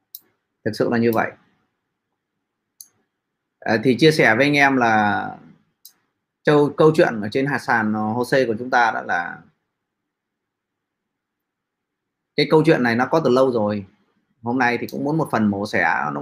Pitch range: 130-185 Hz